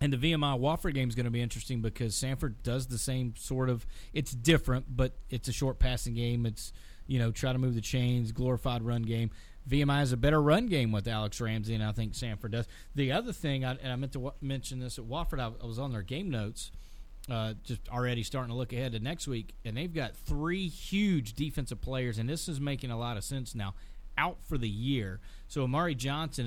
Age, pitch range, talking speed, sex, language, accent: 30-49, 115-140 Hz, 225 wpm, male, English, American